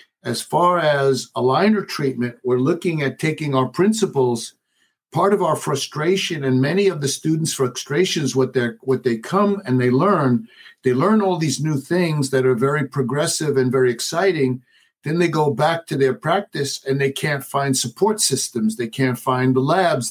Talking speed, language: 180 wpm, English